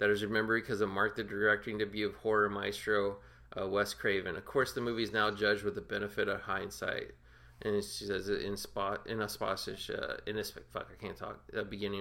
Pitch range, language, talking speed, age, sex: 100-120 Hz, English, 225 wpm, 20-39, male